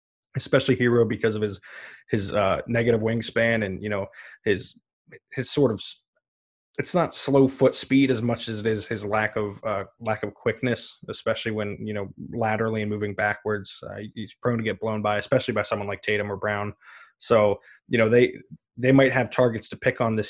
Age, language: 20-39, English